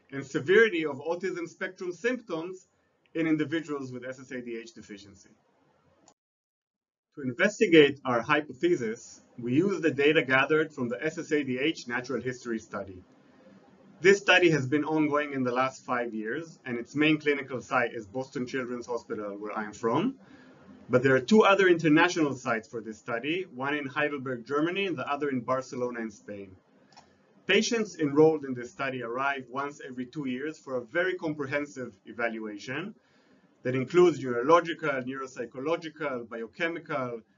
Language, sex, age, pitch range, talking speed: English, male, 30-49, 125-160 Hz, 145 wpm